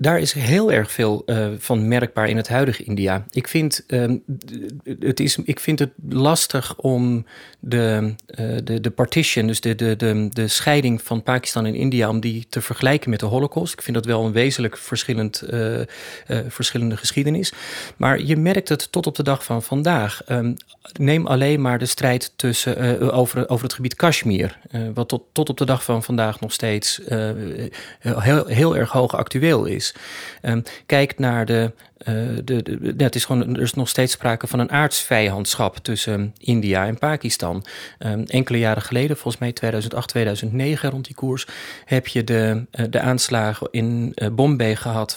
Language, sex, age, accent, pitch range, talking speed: Dutch, male, 40-59, Dutch, 110-130 Hz, 180 wpm